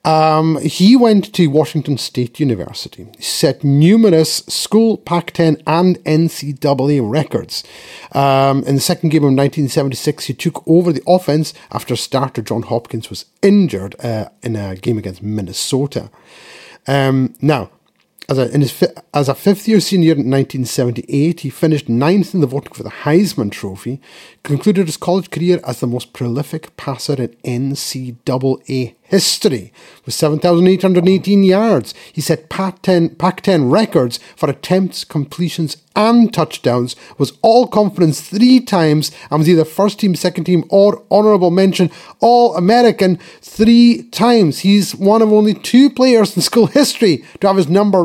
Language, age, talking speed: English, 40-59, 145 wpm